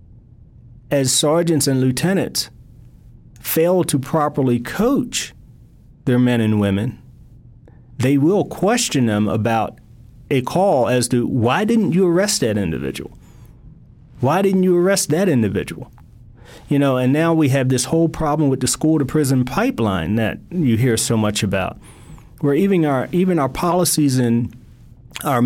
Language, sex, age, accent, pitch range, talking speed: English, male, 40-59, American, 115-145 Hz, 145 wpm